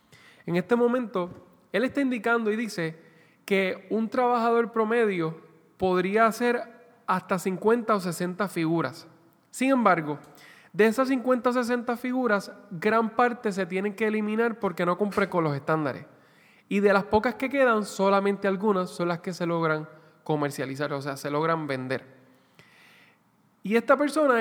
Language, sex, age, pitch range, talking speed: Spanish, male, 10-29, 170-225 Hz, 150 wpm